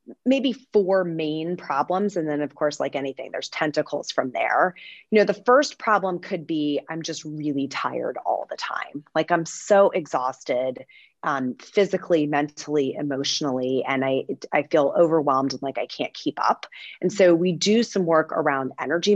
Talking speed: 170 wpm